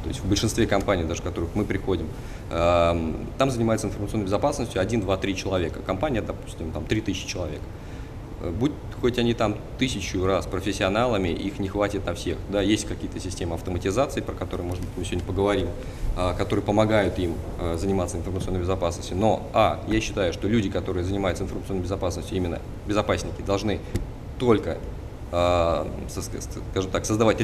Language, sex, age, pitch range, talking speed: Russian, male, 20-39, 90-110 Hz, 150 wpm